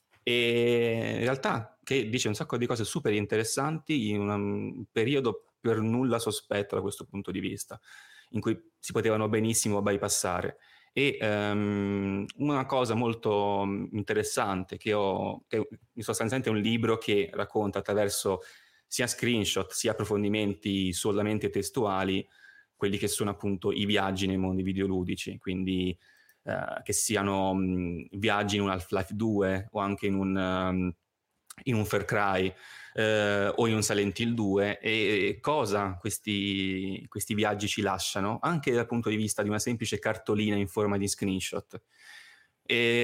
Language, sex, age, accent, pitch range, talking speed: Italian, male, 30-49, native, 100-115 Hz, 150 wpm